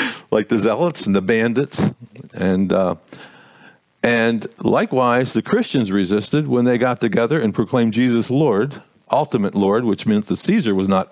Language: English